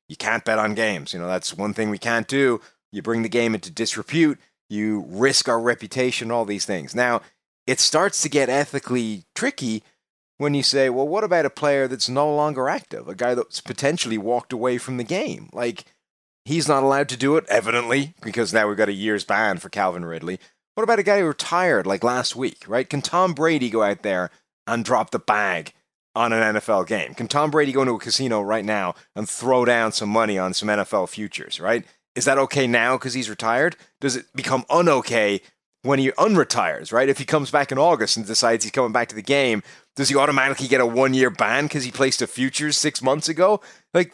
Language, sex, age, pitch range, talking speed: English, male, 30-49, 110-145 Hz, 220 wpm